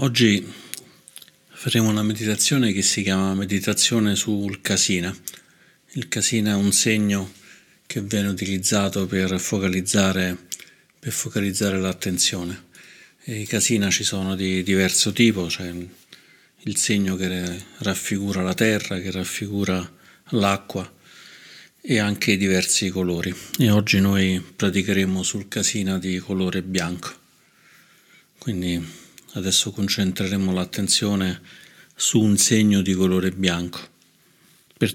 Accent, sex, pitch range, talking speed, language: native, male, 90-105 Hz, 115 wpm, Italian